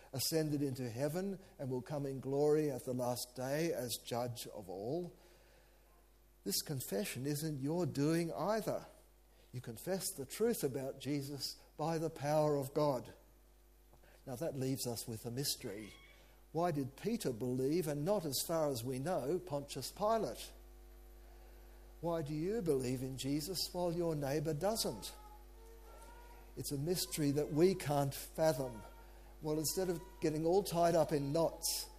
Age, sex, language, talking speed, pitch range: 60-79, male, English, 150 wpm, 135-175 Hz